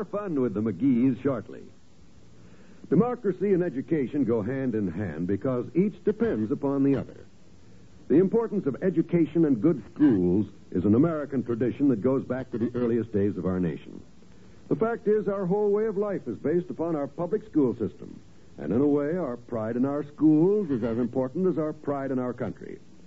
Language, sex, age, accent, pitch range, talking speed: English, male, 60-79, American, 120-170 Hz, 185 wpm